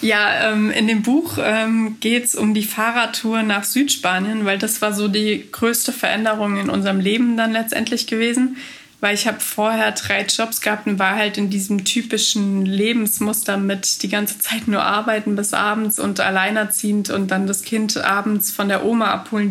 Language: German